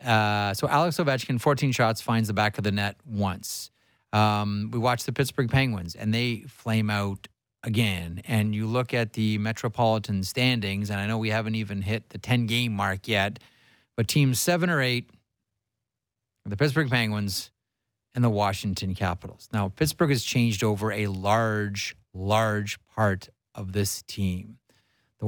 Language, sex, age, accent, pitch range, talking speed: English, male, 30-49, American, 100-125 Hz, 165 wpm